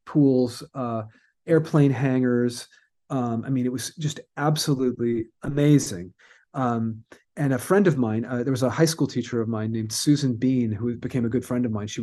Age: 30-49